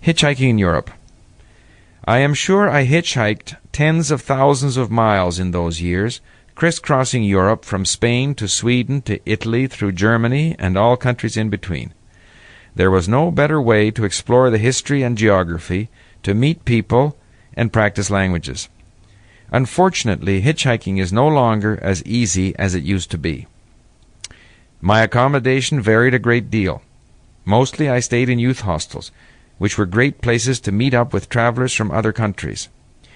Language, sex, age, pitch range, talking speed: English, male, 50-69, 100-130 Hz, 150 wpm